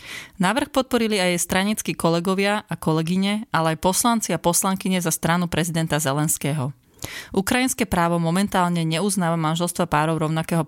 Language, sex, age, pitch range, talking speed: Slovak, female, 30-49, 155-190 Hz, 130 wpm